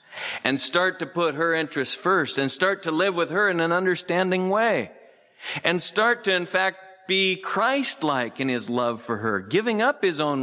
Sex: male